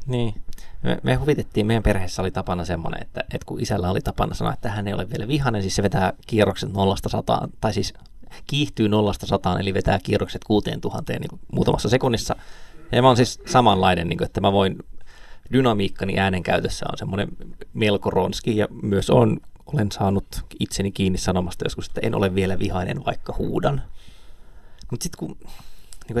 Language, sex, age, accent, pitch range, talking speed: Finnish, male, 20-39, native, 95-125 Hz, 175 wpm